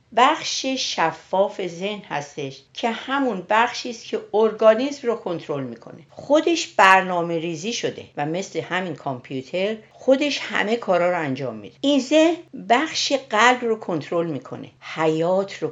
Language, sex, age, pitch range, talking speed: Persian, female, 50-69, 150-220 Hz, 135 wpm